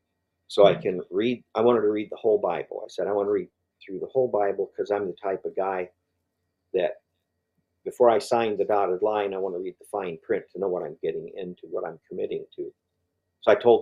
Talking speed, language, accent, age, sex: 235 wpm, English, American, 50-69, male